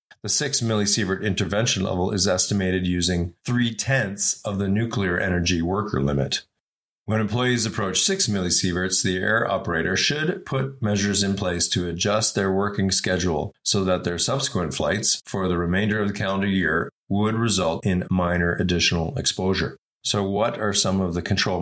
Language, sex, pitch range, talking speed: English, male, 90-105 Hz, 165 wpm